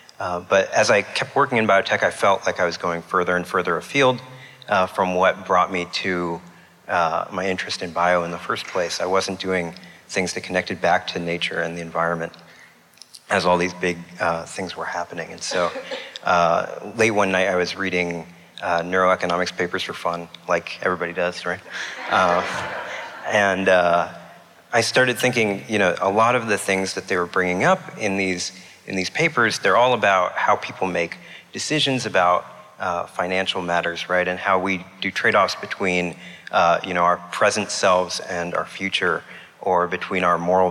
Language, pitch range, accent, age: English, 85-95 Hz, American, 30-49